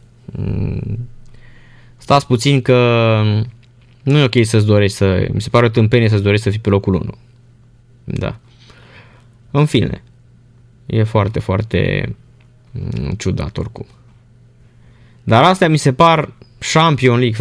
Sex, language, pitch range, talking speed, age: male, Romanian, 115-150 Hz, 125 wpm, 20-39